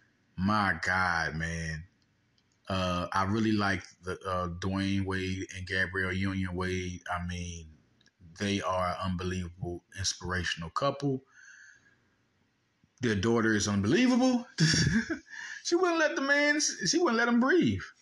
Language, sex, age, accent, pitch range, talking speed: English, male, 20-39, American, 95-140 Hz, 125 wpm